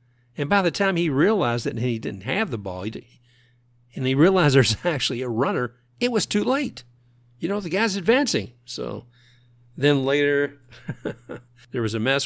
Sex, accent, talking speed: male, American, 170 wpm